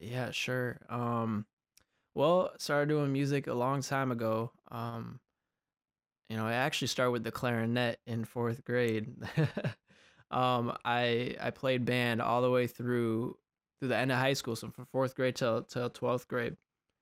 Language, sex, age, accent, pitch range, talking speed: English, male, 20-39, American, 115-135 Hz, 160 wpm